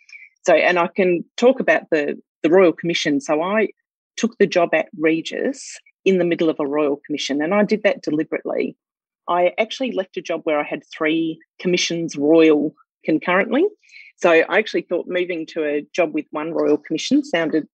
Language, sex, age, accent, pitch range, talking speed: English, female, 30-49, Australian, 155-220 Hz, 185 wpm